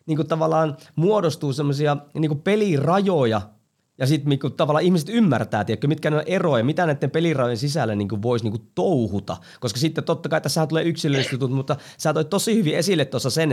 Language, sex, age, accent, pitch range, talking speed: Finnish, male, 30-49, native, 115-150 Hz, 175 wpm